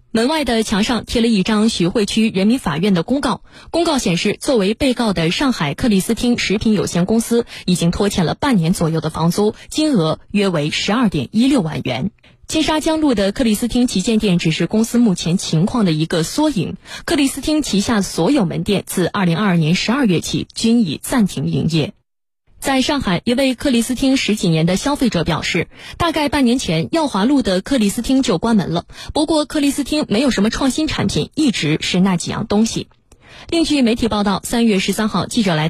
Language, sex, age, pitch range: Chinese, female, 20-39, 180-265 Hz